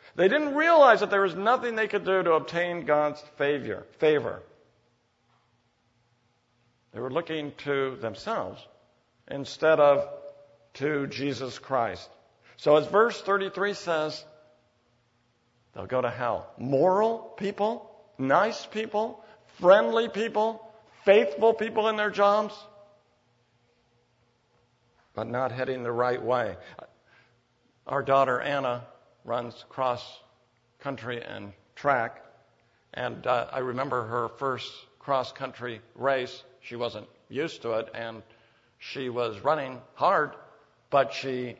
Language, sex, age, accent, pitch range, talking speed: English, male, 60-79, American, 120-200 Hz, 115 wpm